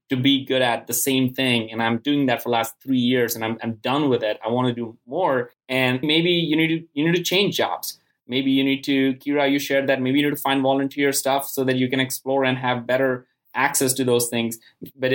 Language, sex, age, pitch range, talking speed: English, male, 20-39, 120-140 Hz, 260 wpm